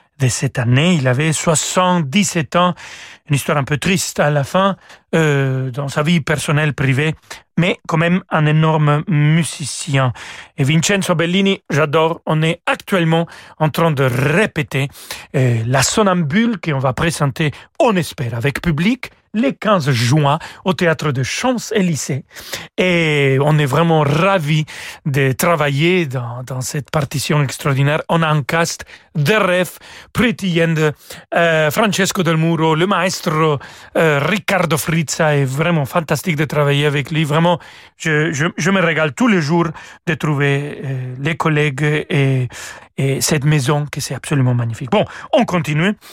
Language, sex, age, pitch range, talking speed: French, male, 40-59, 140-175 Hz, 150 wpm